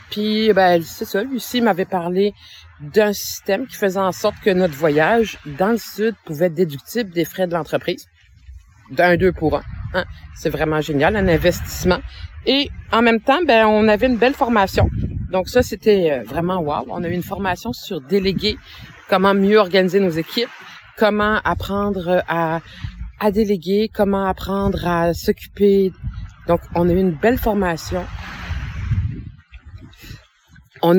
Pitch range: 165-210 Hz